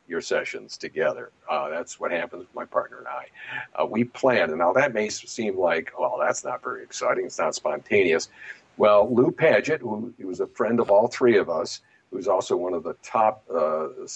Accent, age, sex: American, 50-69, male